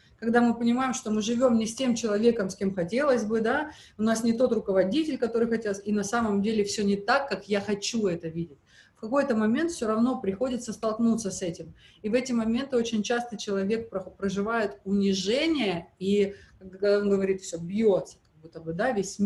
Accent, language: native, Russian